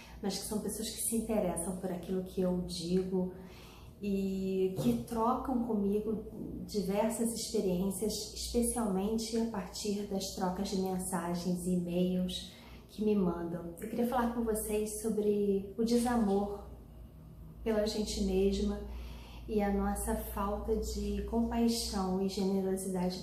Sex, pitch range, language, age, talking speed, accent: female, 185-225 Hz, Portuguese, 30-49, 125 wpm, Brazilian